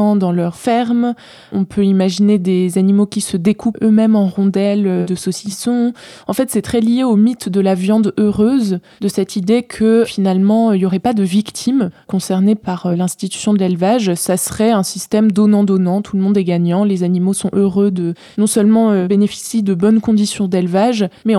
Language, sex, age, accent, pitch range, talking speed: French, female, 20-39, French, 190-220 Hz, 185 wpm